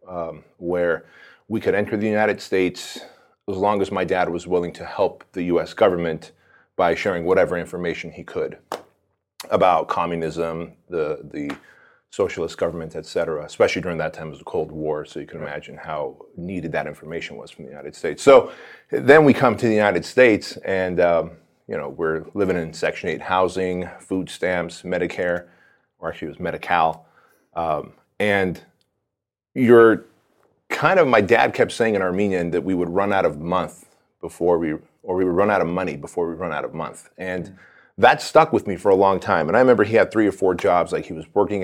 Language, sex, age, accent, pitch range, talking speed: English, male, 30-49, American, 90-105 Hz, 195 wpm